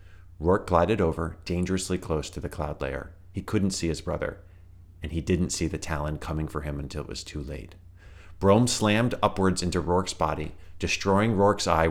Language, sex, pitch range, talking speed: English, male, 80-90 Hz, 185 wpm